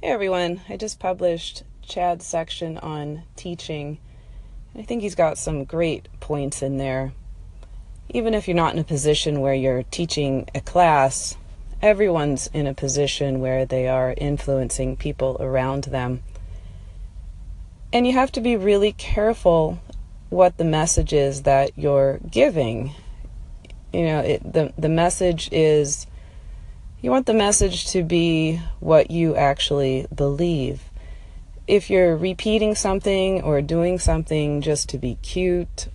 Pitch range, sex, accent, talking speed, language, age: 130-180 Hz, female, American, 135 wpm, English, 30-49